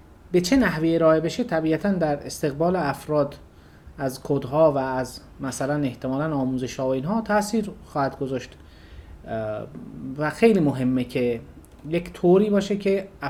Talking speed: 130 wpm